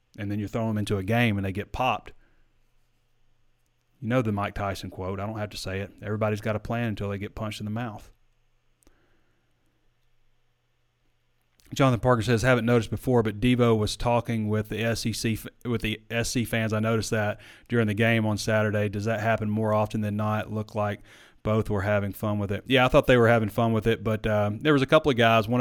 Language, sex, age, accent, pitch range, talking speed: English, male, 30-49, American, 105-120 Hz, 220 wpm